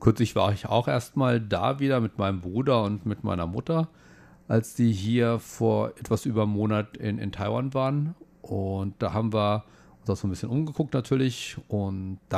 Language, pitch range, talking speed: German, 100-120 Hz, 190 wpm